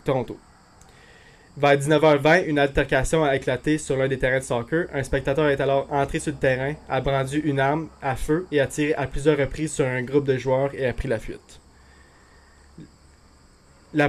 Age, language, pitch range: 20-39, French, 130-145 Hz